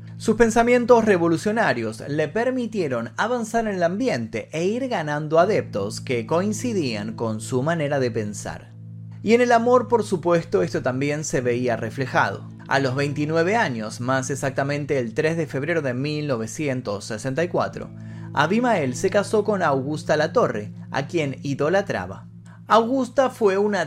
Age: 30-49